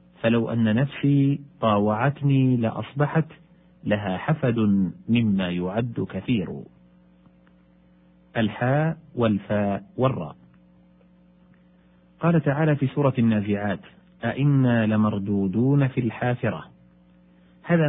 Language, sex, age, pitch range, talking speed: Arabic, male, 40-59, 85-135 Hz, 75 wpm